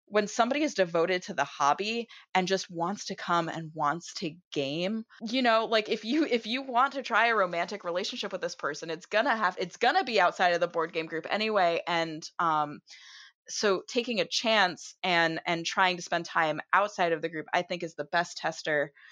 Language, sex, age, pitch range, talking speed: English, female, 20-39, 175-255 Hz, 215 wpm